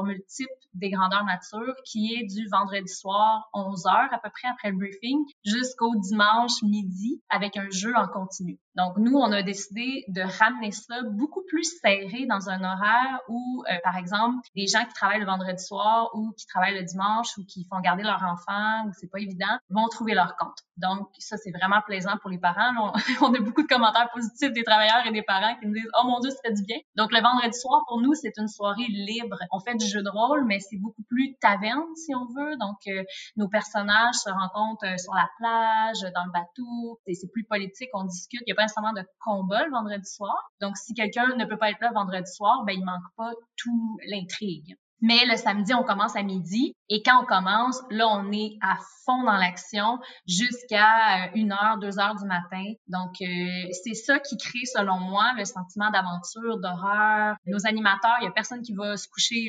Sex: female